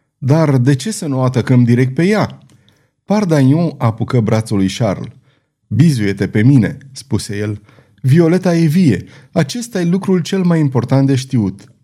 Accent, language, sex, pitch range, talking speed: native, Romanian, male, 120-165 Hz, 150 wpm